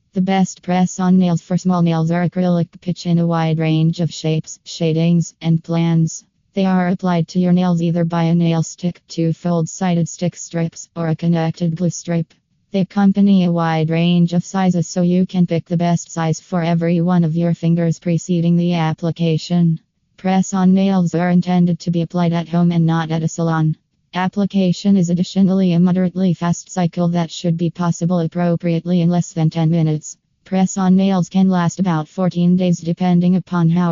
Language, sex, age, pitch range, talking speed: English, female, 20-39, 165-180 Hz, 180 wpm